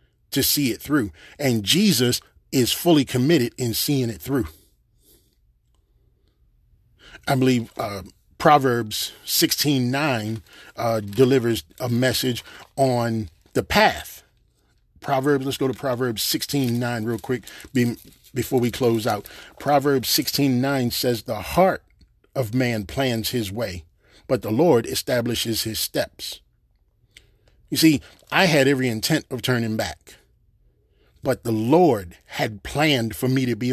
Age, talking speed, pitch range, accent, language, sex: 40-59, 135 wpm, 110-140 Hz, American, English, male